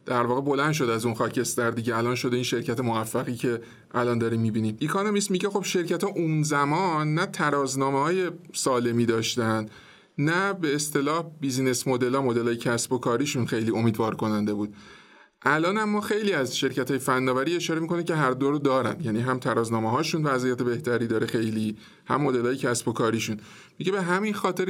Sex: male